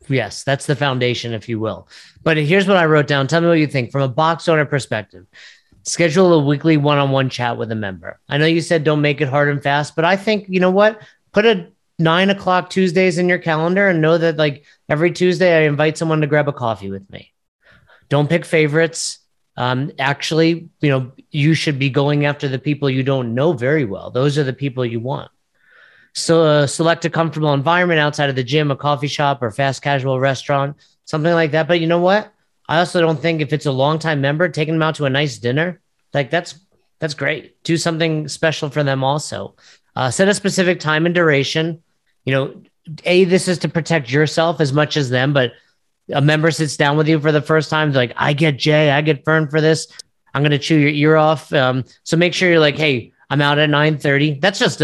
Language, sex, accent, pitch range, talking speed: English, male, American, 140-165 Hz, 225 wpm